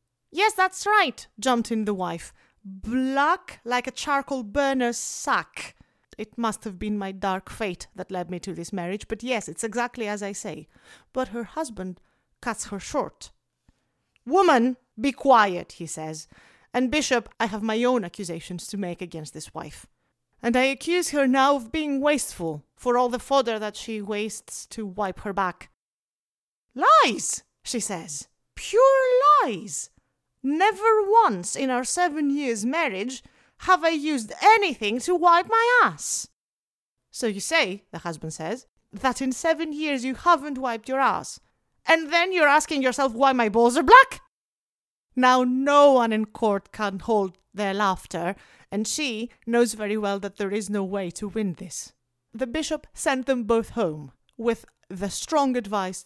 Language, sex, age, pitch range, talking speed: English, female, 30-49, 195-280 Hz, 165 wpm